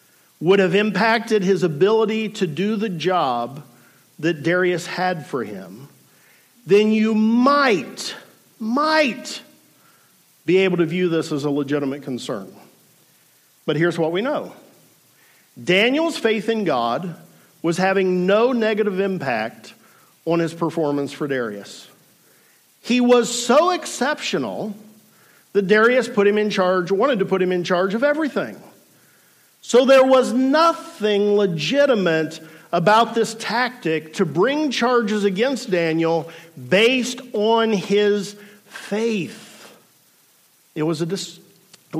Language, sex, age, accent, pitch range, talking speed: English, male, 50-69, American, 165-220 Hz, 120 wpm